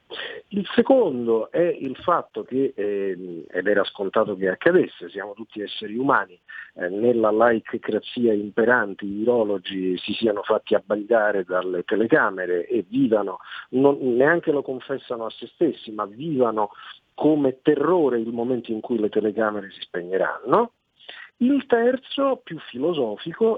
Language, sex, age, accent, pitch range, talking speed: Italian, male, 50-69, native, 110-165 Hz, 135 wpm